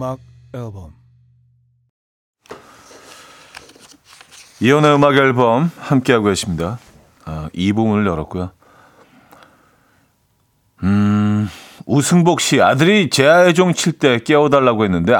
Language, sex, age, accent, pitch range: Korean, male, 40-59, native, 95-140 Hz